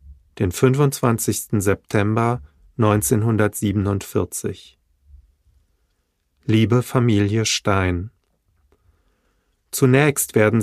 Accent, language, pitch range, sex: German, German, 90-120 Hz, male